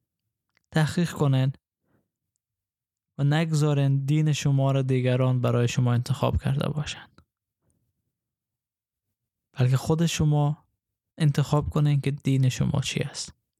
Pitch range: 130-155 Hz